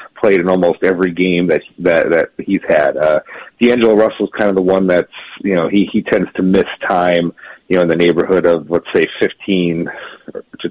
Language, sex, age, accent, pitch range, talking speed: English, male, 40-59, American, 85-105 Hz, 205 wpm